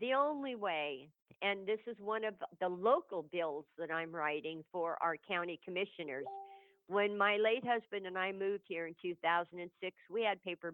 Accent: American